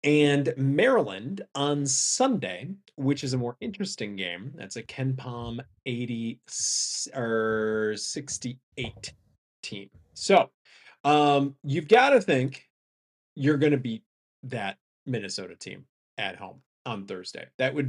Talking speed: 125 wpm